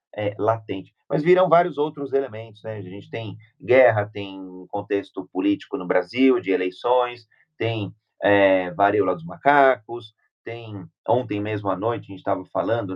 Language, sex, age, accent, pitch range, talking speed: Portuguese, male, 30-49, Brazilian, 100-135 Hz, 155 wpm